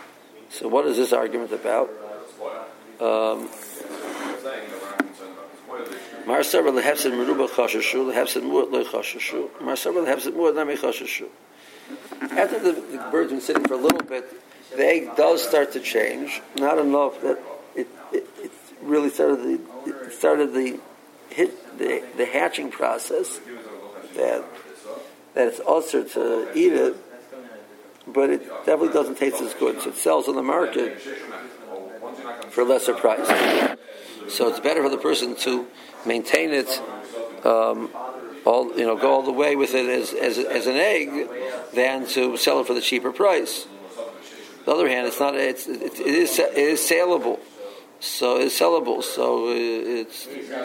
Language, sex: English, male